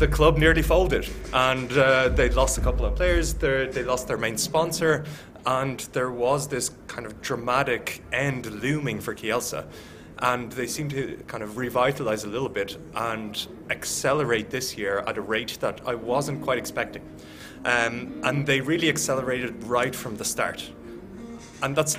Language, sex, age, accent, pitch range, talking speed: English, male, 20-39, Irish, 110-135 Hz, 165 wpm